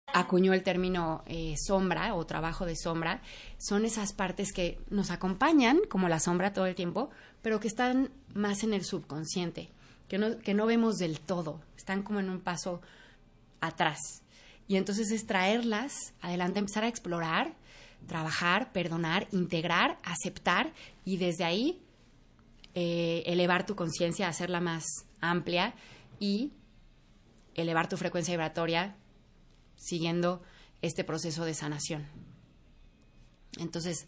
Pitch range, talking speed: 170-205 Hz, 130 wpm